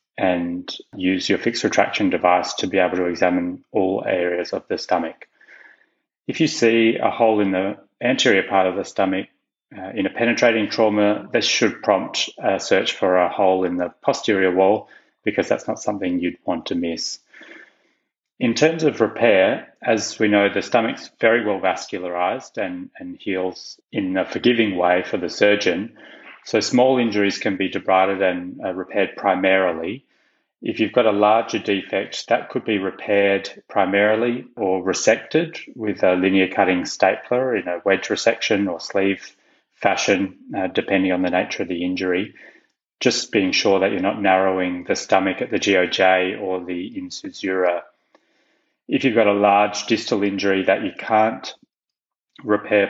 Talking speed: 165 wpm